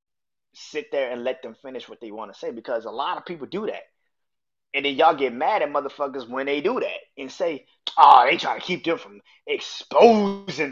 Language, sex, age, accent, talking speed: English, male, 20-39, American, 220 wpm